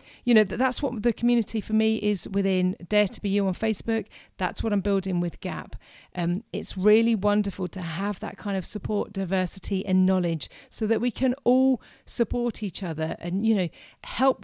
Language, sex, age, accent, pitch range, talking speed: English, female, 40-59, British, 175-230 Hz, 195 wpm